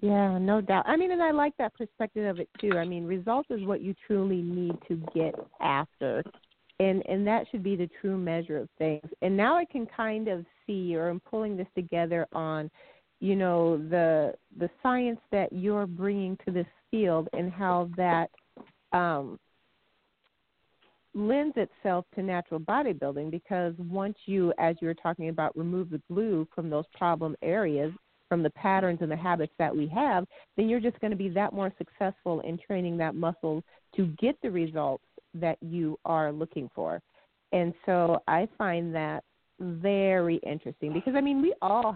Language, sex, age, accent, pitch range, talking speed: English, female, 40-59, American, 160-200 Hz, 180 wpm